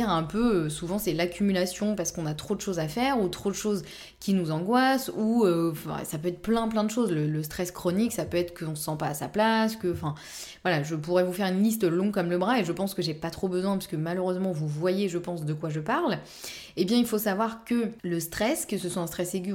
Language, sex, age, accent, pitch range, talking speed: French, female, 20-39, French, 165-200 Hz, 275 wpm